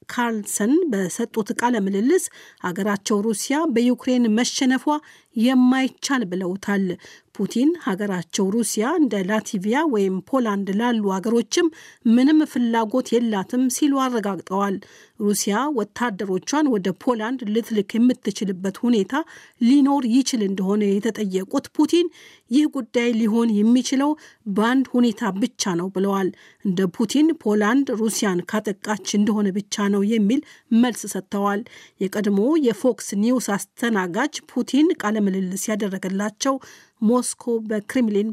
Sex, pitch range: female, 205-255 Hz